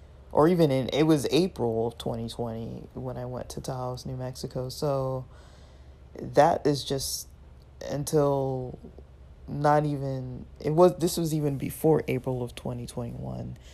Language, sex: English, male